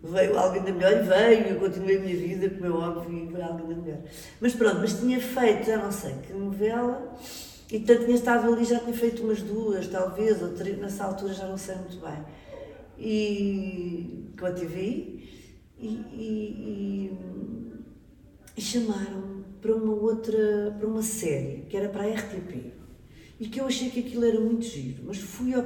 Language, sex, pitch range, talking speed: Portuguese, female, 175-220 Hz, 195 wpm